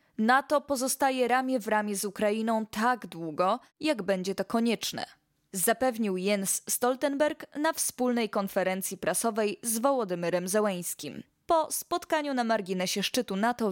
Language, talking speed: Polish, 125 wpm